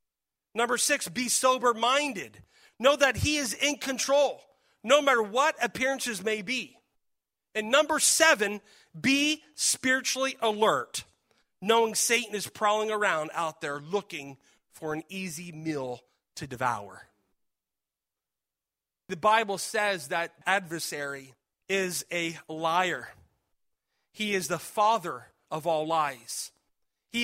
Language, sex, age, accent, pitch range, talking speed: English, male, 40-59, American, 185-250 Hz, 115 wpm